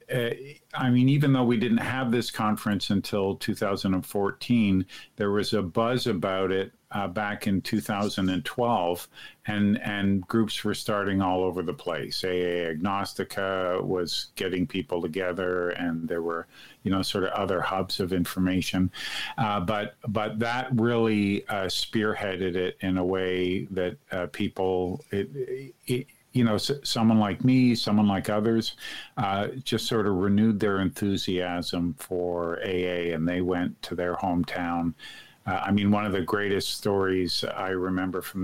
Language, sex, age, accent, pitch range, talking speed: English, male, 50-69, American, 95-110 Hz, 155 wpm